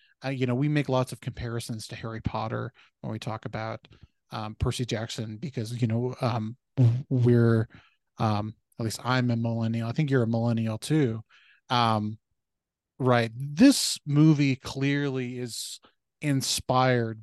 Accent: American